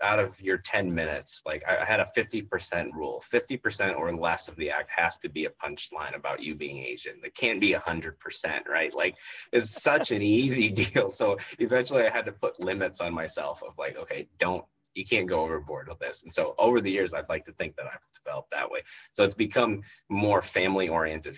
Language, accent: English, American